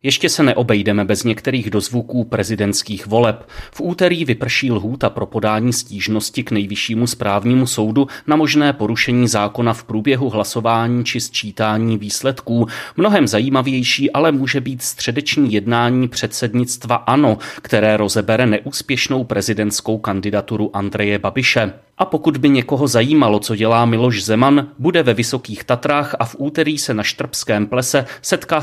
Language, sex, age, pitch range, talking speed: Czech, male, 30-49, 110-140 Hz, 140 wpm